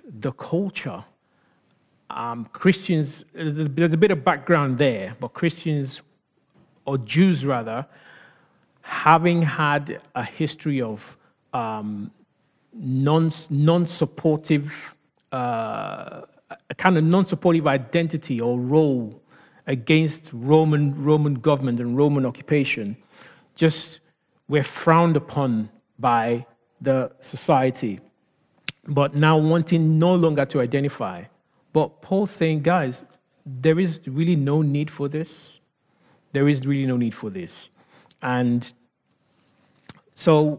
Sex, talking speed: male, 110 wpm